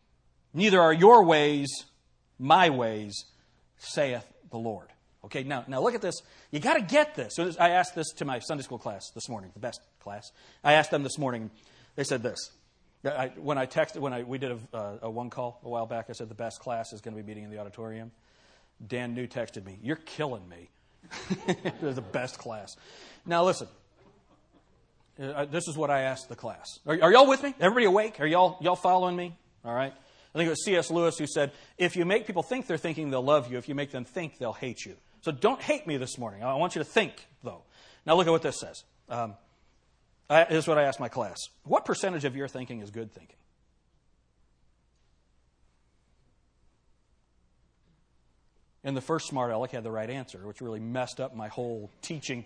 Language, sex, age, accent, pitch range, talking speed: English, male, 40-59, American, 105-155 Hz, 205 wpm